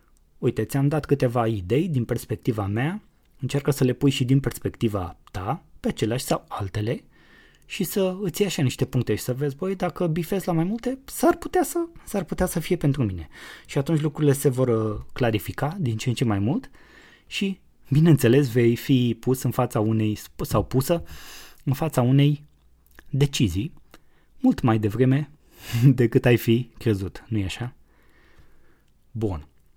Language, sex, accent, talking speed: Romanian, male, native, 165 wpm